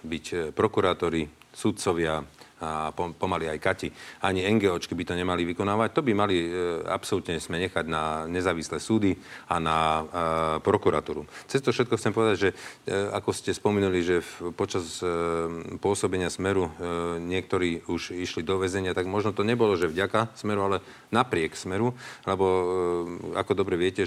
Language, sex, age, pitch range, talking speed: Slovak, male, 40-59, 85-95 Hz, 160 wpm